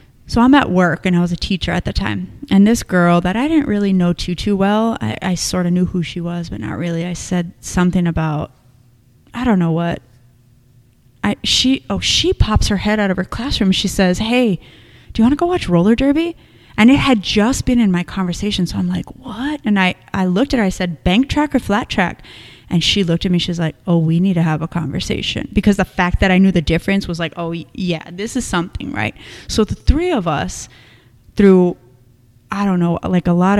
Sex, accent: female, American